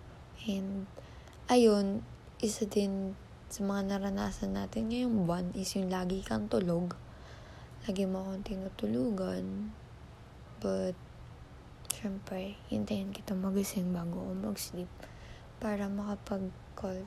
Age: 20-39